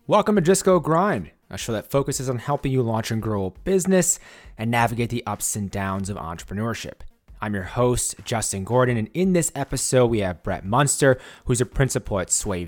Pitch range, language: 100-135 Hz, English